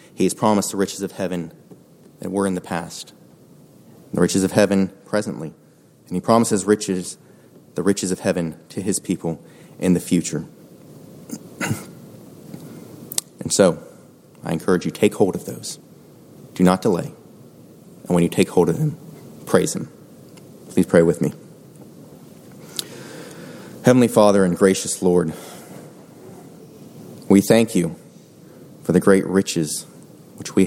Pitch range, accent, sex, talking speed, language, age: 90-100 Hz, American, male, 135 wpm, English, 30-49